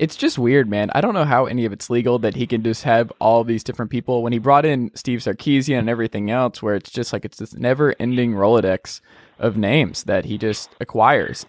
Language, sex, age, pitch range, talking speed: English, male, 20-39, 110-130 Hz, 230 wpm